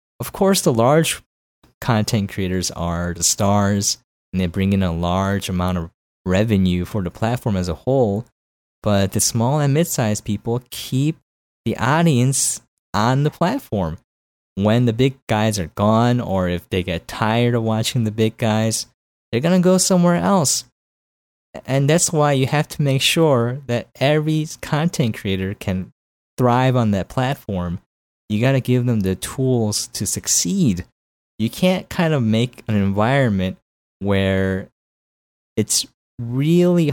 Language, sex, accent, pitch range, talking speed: English, male, American, 95-130 Hz, 155 wpm